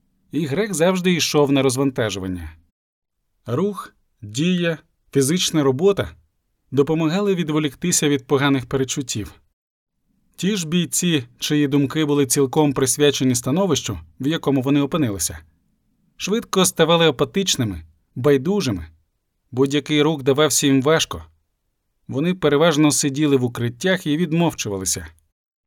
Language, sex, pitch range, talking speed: Ukrainian, male, 120-160 Hz, 105 wpm